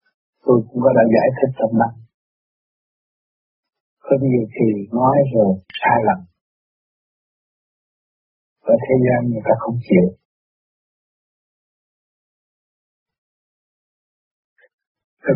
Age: 50-69